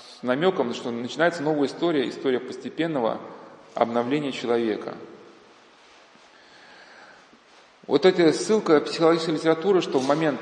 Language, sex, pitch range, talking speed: Russian, male, 120-160 Hz, 110 wpm